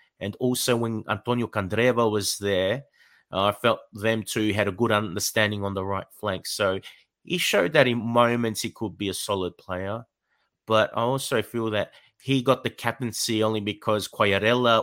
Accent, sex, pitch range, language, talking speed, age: Australian, male, 100-120 Hz, English, 180 wpm, 30-49